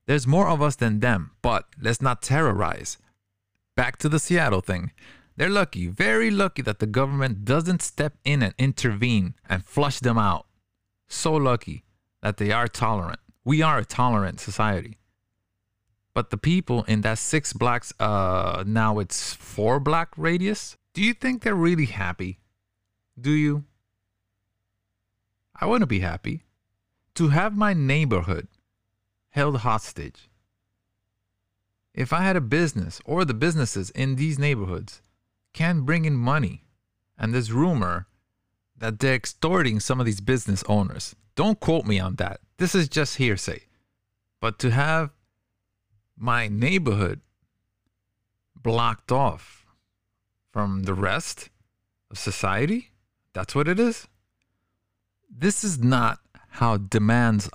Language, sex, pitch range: English, male, 100-140 Hz